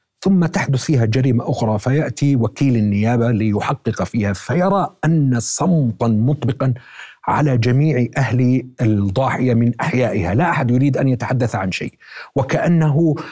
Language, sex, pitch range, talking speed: Arabic, male, 115-155 Hz, 125 wpm